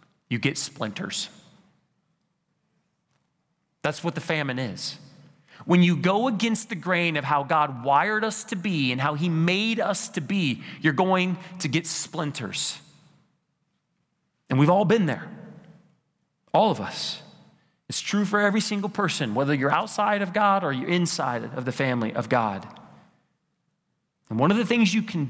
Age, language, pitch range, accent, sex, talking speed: 30-49, English, 145-185 Hz, American, male, 160 wpm